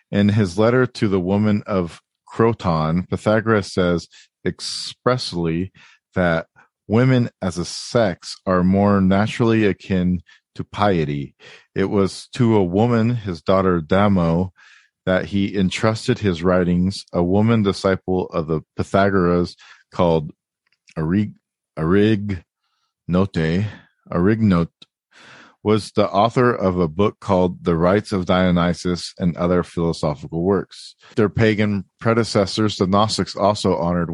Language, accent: English, American